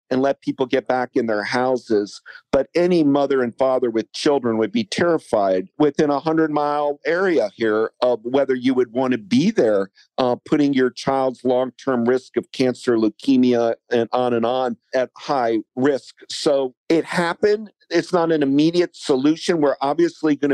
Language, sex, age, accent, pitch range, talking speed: English, male, 50-69, American, 125-155 Hz, 170 wpm